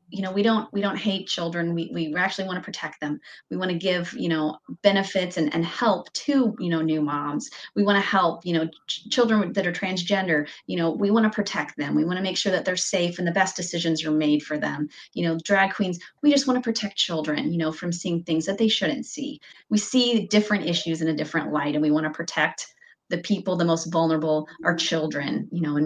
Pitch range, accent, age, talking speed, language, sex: 155-205 Hz, American, 30-49, 240 wpm, English, female